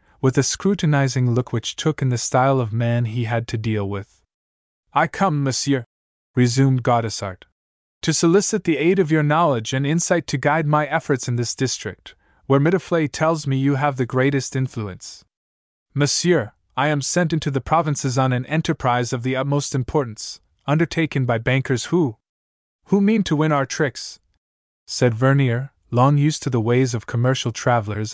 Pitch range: 115-155 Hz